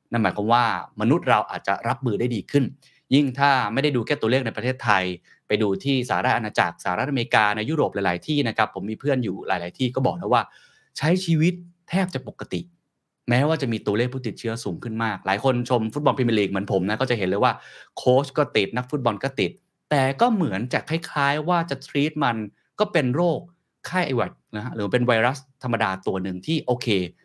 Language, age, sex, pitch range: Thai, 30-49, male, 105-145 Hz